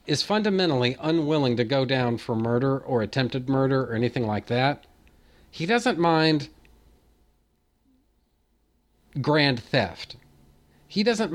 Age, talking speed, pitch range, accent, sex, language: 40-59, 115 wpm, 120-155 Hz, American, male, English